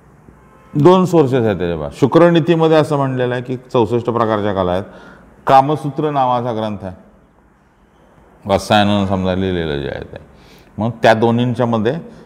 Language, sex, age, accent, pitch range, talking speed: Marathi, male, 40-59, native, 100-145 Hz, 135 wpm